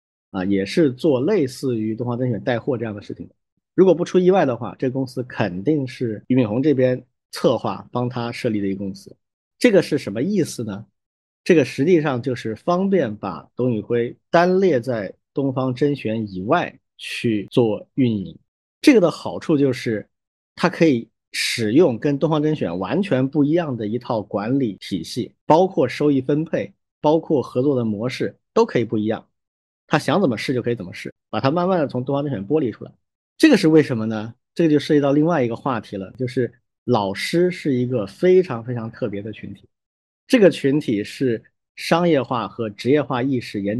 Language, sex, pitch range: Chinese, male, 110-150 Hz